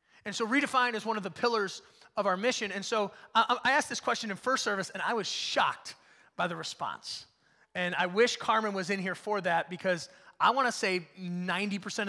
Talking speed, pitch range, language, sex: 210 wpm, 200-265 Hz, English, male